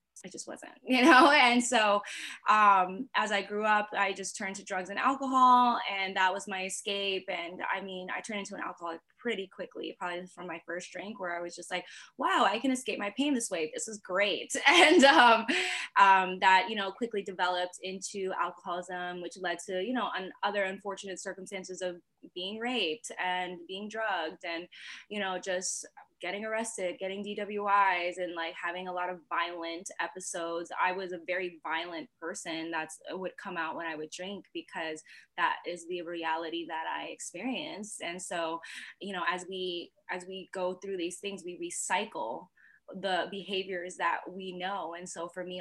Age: 20-39